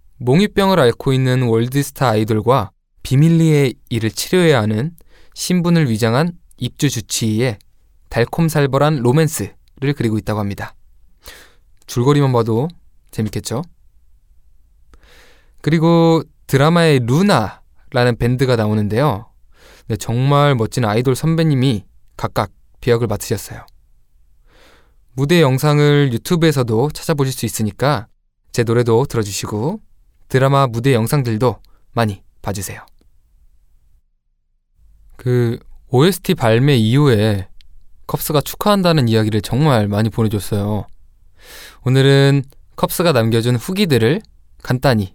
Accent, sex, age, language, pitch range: native, male, 20-39, Korean, 100-145 Hz